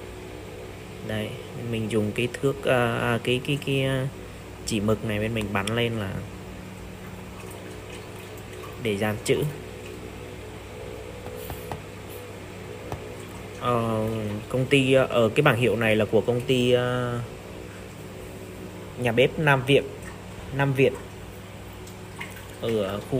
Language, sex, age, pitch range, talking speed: Vietnamese, male, 20-39, 95-125 Hz, 105 wpm